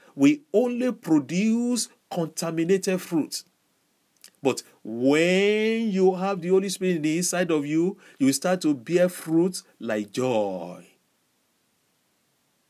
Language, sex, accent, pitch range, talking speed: English, male, Nigerian, 170-230 Hz, 120 wpm